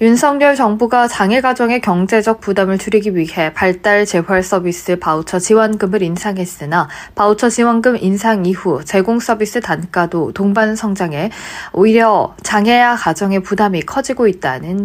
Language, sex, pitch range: Korean, female, 180-235 Hz